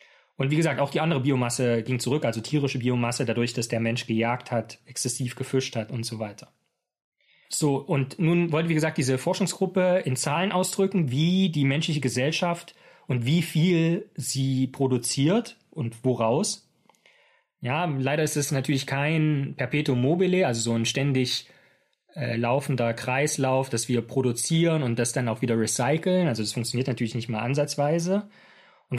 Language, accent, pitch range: German, German, 125-170 Hz